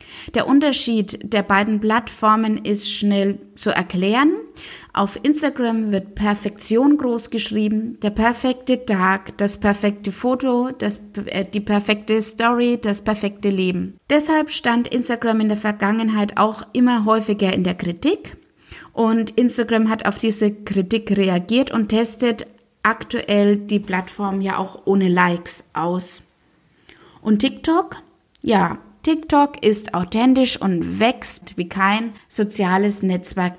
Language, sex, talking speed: German, female, 125 wpm